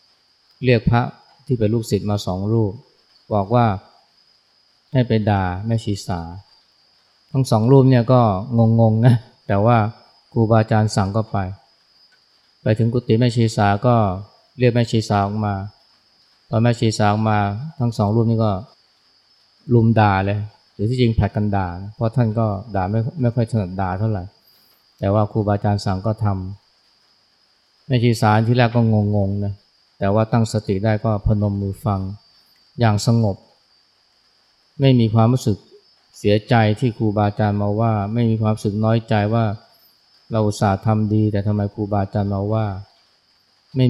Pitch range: 100-115 Hz